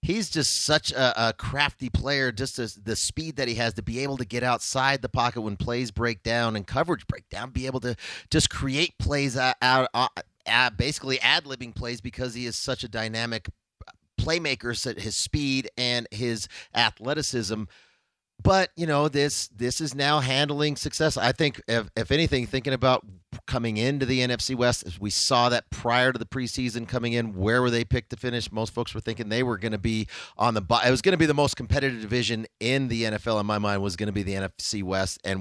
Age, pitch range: 30-49, 110-135 Hz